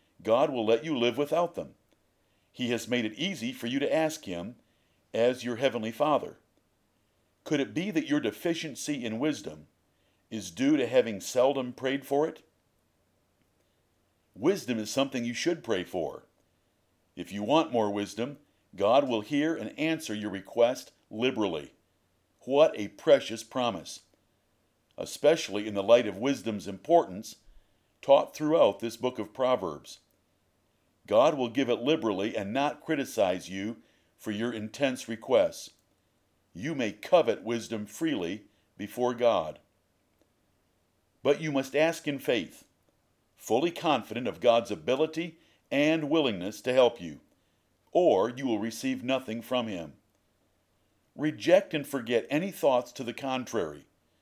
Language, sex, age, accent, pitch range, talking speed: English, male, 50-69, American, 105-145 Hz, 140 wpm